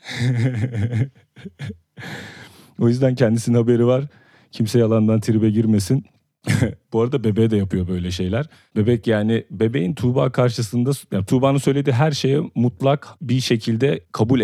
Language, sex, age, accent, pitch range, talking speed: Turkish, male, 40-59, native, 100-125 Hz, 125 wpm